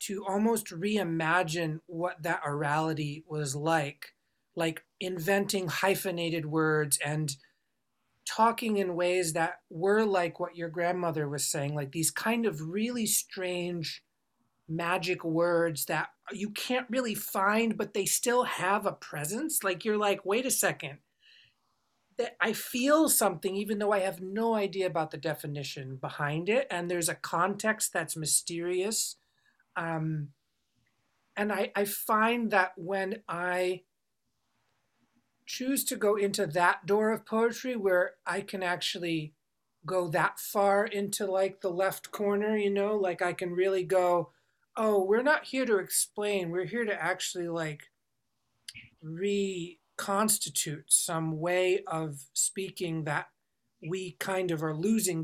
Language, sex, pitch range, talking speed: English, male, 160-205 Hz, 140 wpm